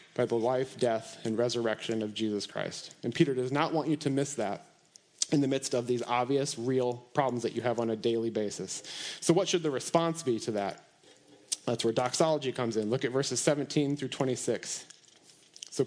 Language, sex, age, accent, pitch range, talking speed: English, male, 30-49, American, 120-150 Hz, 200 wpm